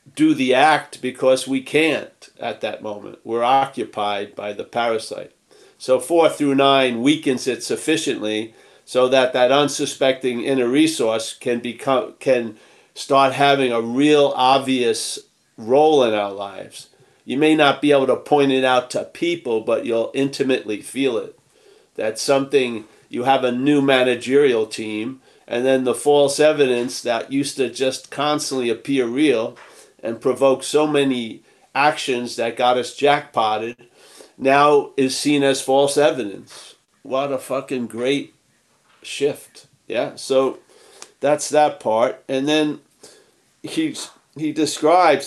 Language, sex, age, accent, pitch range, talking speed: English, male, 50-69, American, 125-150 Hz, 140 wpm